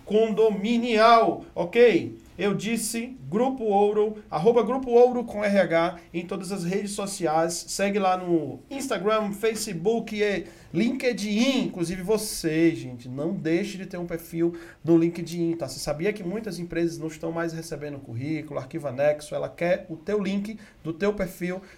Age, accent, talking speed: 40-59, Brazilian, 150 wpm